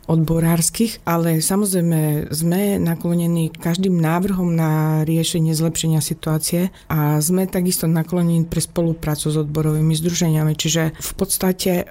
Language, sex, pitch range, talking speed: Slovak, female, 155-180 Hz, 115 wpm